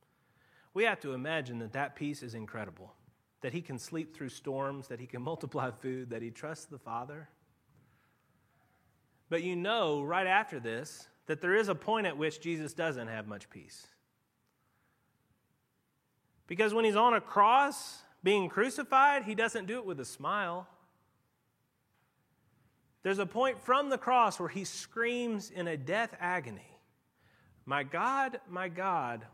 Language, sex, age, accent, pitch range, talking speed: English, male, 30-49, American, 135-210 Hz, 155 wpm